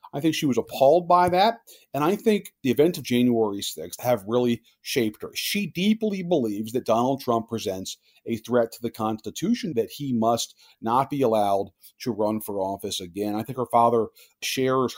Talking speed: 190 wpm